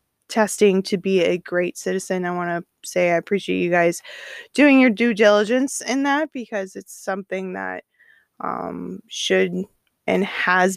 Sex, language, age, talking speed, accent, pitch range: female, English, 20-39, 155 wpm, American, 180-225 Hz